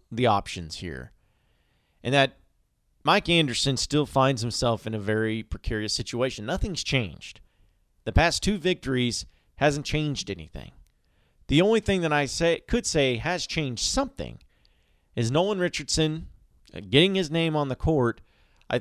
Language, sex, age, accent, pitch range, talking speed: English, male, 40-59, American, 100-150 Hz, 145 wpm